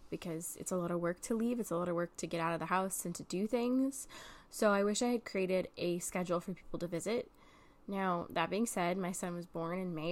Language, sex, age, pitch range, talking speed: English, female, 10-29, 180-220 Hz, 265 wpm